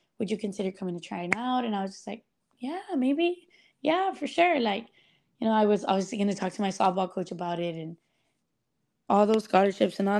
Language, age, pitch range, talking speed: English, 20-39, 190-235 Hz, 230 wpm